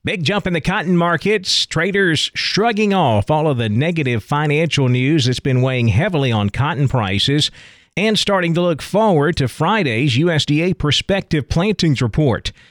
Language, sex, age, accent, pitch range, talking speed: English, male, 40-59, American, 120-160 Hz, 155 wpm